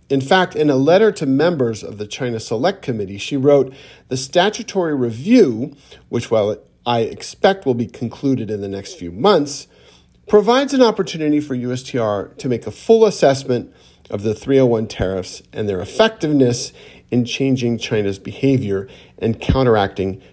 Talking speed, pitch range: 155 wpm, 95-140 Hz